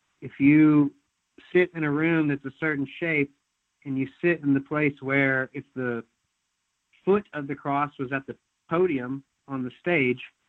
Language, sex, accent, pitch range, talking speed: English, male, American, 130-155 Hz, 170 wpm